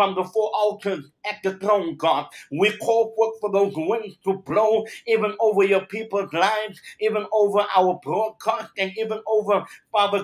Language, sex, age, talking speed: English, male, 60-79, 160 wpm